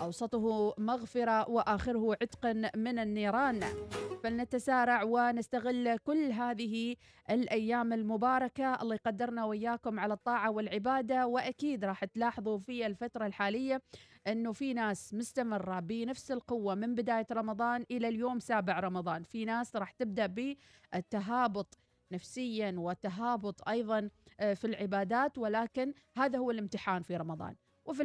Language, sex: Arabic, female